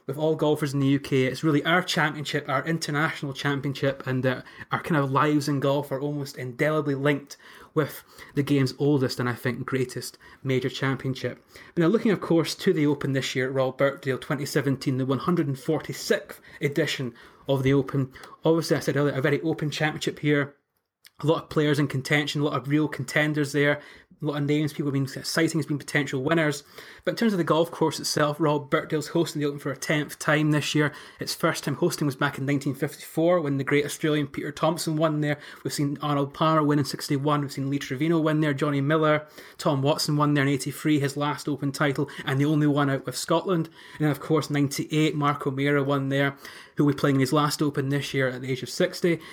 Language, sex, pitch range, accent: English, male, 140-155 Hz, British